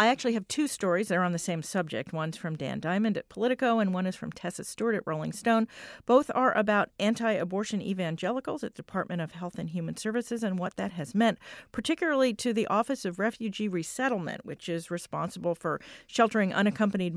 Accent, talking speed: American, 200 wpm